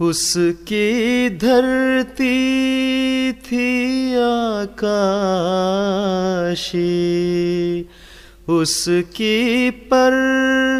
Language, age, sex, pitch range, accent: English, 30-49, male, 175-245 Hz, Indian